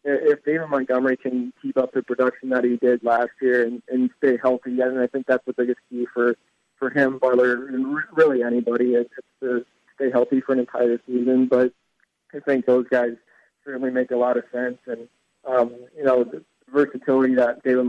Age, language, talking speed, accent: 20-39, English, 195 wpm, American